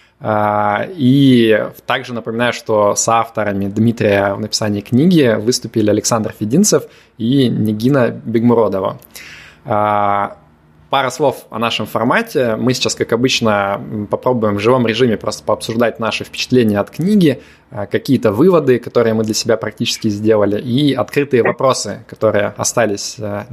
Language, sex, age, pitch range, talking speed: Russian, male, 20-39, 105-120 Hz, 120 wpm